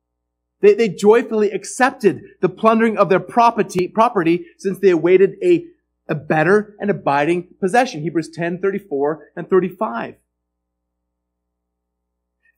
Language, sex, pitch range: English, male, 160-220 Hz